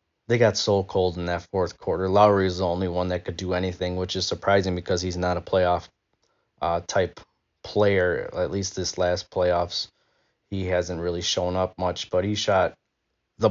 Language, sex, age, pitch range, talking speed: English, male, 20-39, 90-100 Hz, 185 wpm